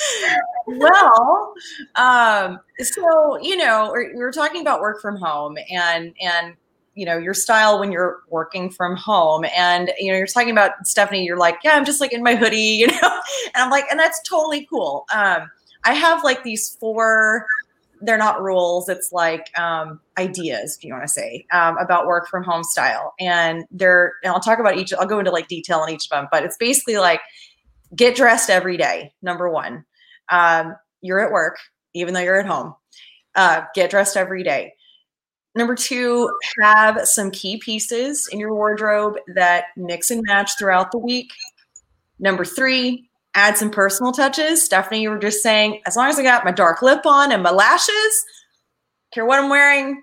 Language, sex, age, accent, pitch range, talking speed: English, female, 30-49, American, 180-250 Hz, 185 wpm